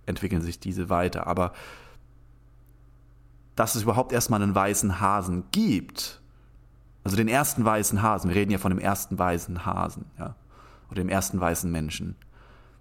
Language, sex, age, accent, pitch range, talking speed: German, male, 30-49, German, 95-120 Hz, 150 wpm